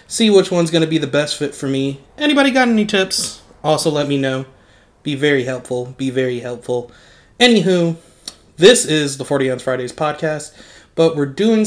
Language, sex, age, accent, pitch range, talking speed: English, male, 20-39, American, 135-185 Hz, 185 wpm